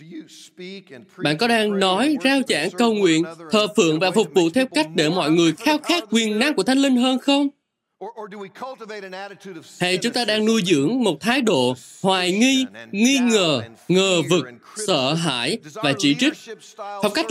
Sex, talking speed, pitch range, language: male, 170 wpm, 170-245 Hz, Vietnamese